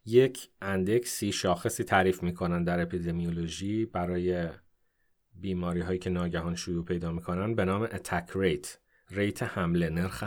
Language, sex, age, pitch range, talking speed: Persian, male, 30-49, 90-115 Hz, 125 wpm